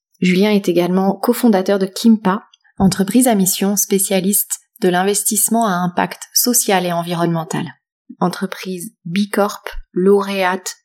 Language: French